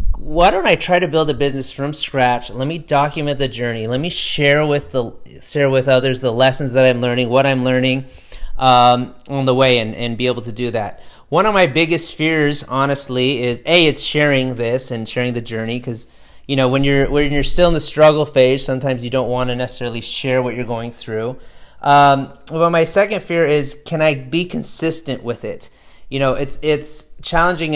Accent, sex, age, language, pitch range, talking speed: American, male, 30-49, English, 125-155 Hz, 210 wpm